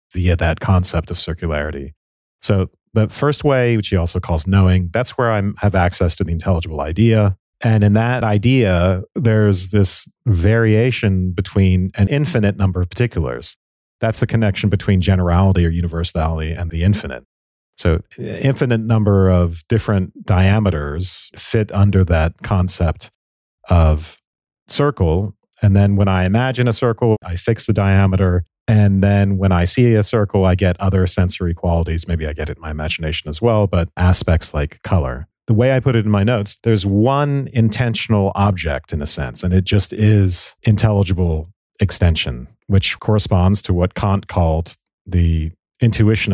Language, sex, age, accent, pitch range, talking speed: English, male, 40-59, American, 85-110 Hz, 160 wpm